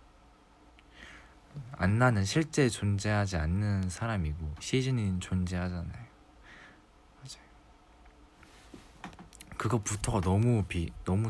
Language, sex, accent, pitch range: Korean, male, native, 90-115 Hz